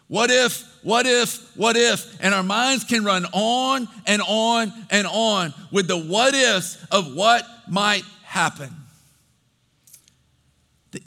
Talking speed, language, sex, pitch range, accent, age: 135 wpm, English, male, 175-225 Hz, American, 40-59